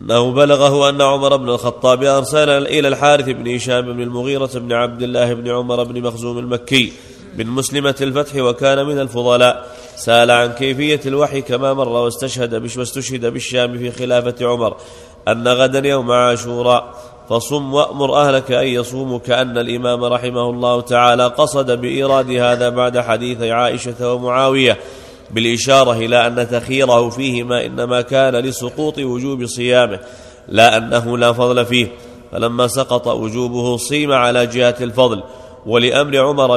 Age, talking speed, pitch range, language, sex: 30-49, 140 wpm, 120-130 Hz, Arabic, male